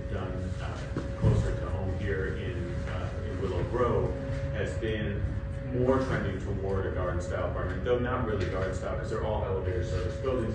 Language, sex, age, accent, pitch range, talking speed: English, male, 40-59, American, 90-110 Hz, 175 wpm